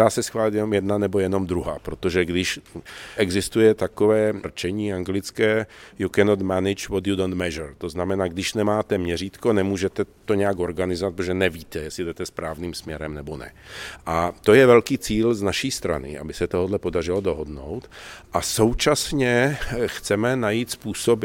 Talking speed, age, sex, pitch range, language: 155 wpm, 50-69, male, 85-105 Hz, Czech